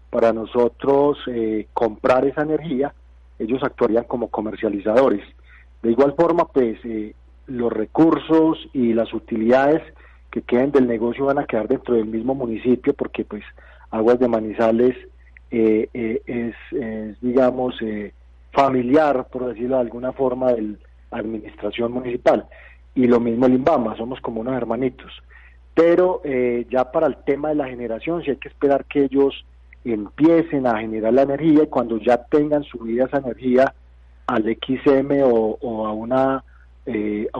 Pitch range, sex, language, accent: 110-140 Hz, male, Spanish, Colombian